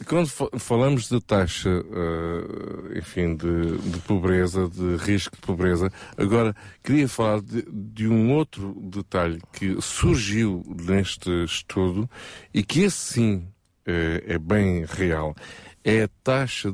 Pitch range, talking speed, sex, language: 90-110 Hz, 120 wpm, male, Portuguese